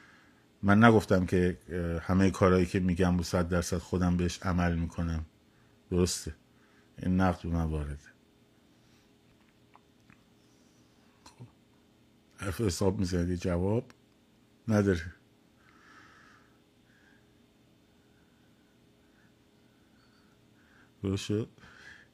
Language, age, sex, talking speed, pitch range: Persian, 50-69, male, 70 wpm, 90-110 Hz